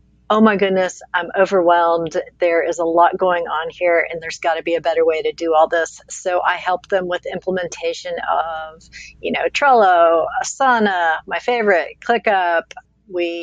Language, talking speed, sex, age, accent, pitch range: English, 175 wpm, female, 40-59, American, 170-195 Hz